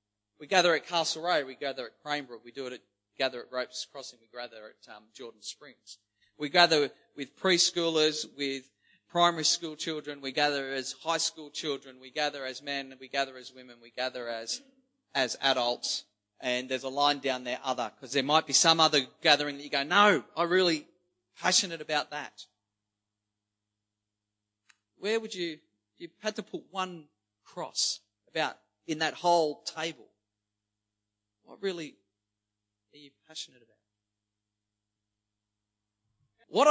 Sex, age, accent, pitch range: male, 40-59, Australian, 110-180 Hz